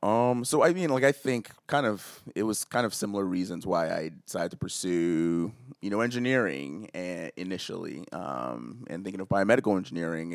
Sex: male